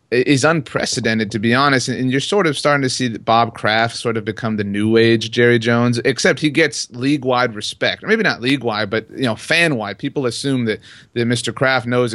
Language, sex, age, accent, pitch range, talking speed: English, male, 30-49, American, 115-135 Hz, 225 wpm